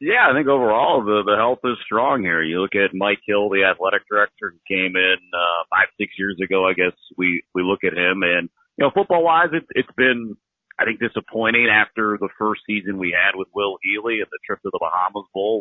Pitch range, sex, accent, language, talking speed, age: 95-120 Hz, male, American, English, 225 wpm, 40-59